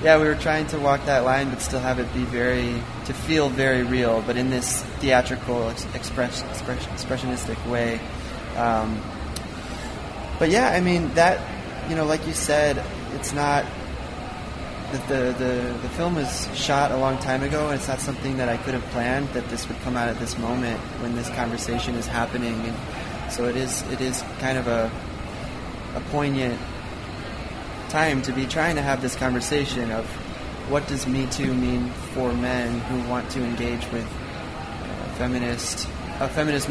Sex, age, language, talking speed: male, 20-39, English, 175 wpm